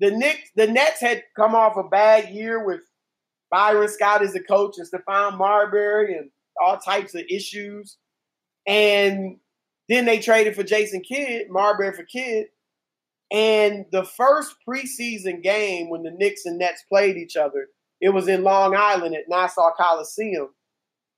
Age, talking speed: 30-49, 155 wpm